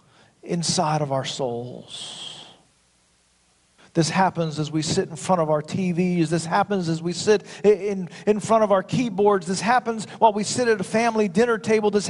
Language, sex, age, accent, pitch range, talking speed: English, male, 40-59, American, 165-230 Hz, 180 wpm